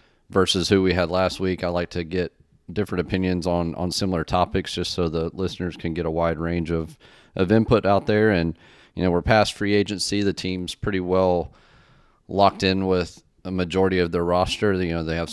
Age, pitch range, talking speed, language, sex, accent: 30-49, 85-95 Hz, 210 wpm, English, male, American